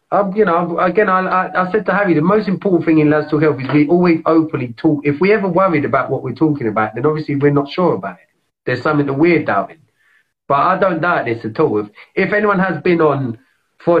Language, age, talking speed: English, 30-49, 250 wpm